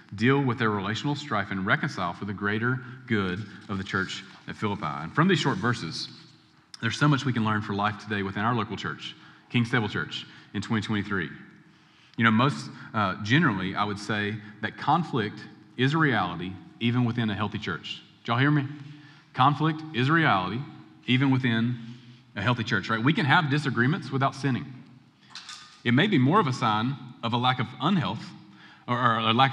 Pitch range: 105-130 Hz